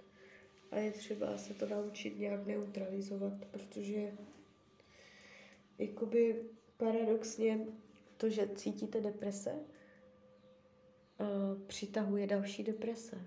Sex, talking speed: female, 80 wpm